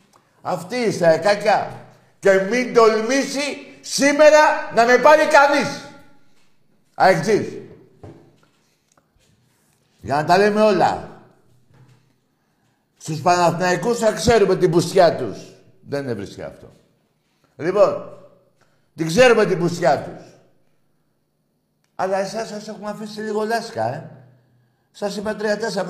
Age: 60-79